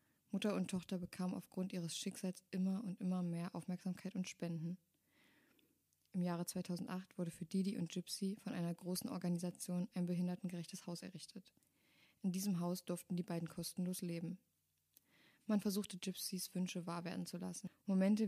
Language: German